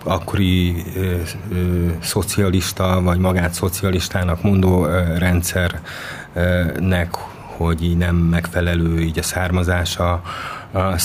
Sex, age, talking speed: male, 30-49, 90 wpm